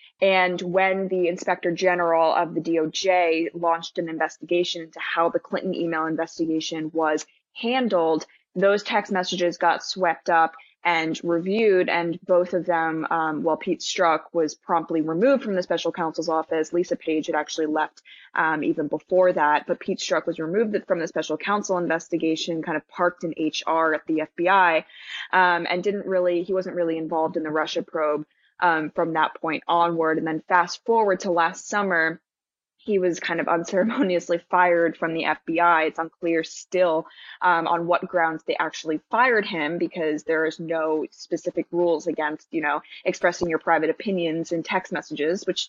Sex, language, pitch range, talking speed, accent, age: female, English, 160-180 Hz, 170 wpm, American, 20-39